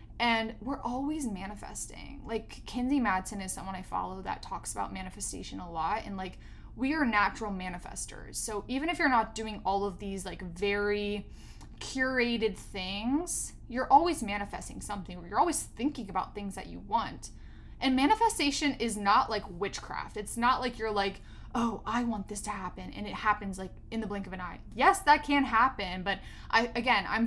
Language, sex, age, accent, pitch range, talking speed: English, female, 20-39, American, 200-255 Hz, 185 wpm